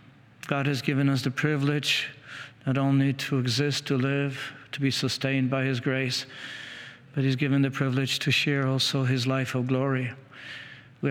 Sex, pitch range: male, 130-145 Hz